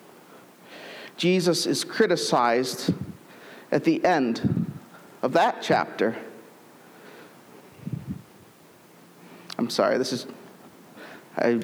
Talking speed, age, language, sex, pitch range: 70 wpm, 50-69, English, male, 150-195 Hz